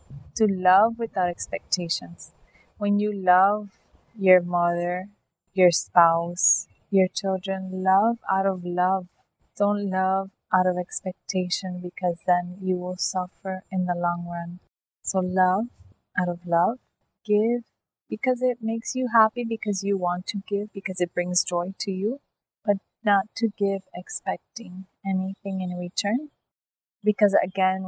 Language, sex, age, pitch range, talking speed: English, female, 30-49, 175-205 Hz, 135 wpm